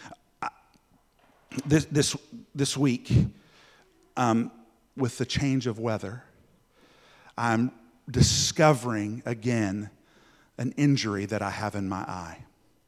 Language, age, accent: English, 50-69, American